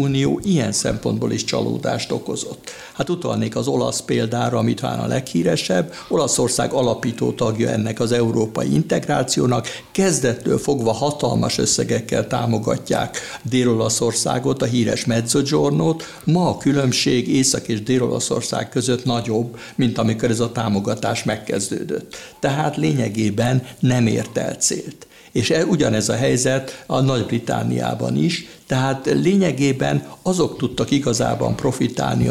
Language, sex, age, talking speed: Hungarian, male, 60-79, 115 wpm